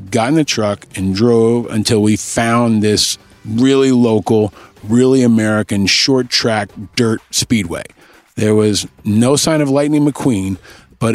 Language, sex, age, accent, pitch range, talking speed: English, male, 40-59, American, 110-135 Hz, 140 wpm